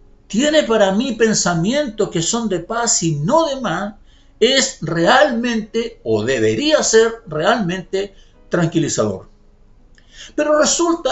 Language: Spanish